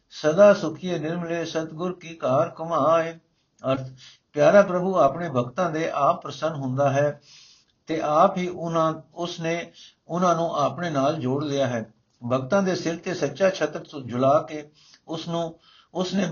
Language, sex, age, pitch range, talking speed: Punjabi, male, 60-79, 140-170 Hz, 145 wpm